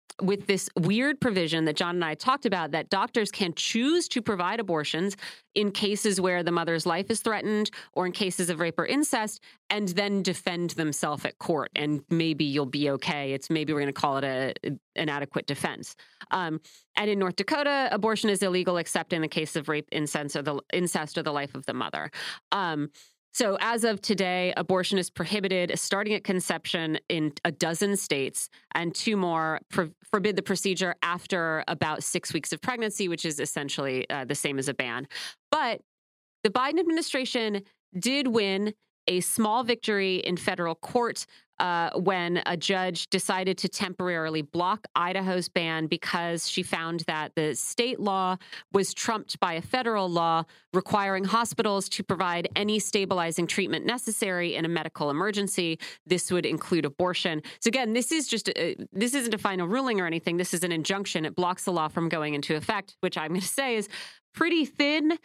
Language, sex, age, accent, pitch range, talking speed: English, female, 40-59, American, 165-210 Hz, 180 wpm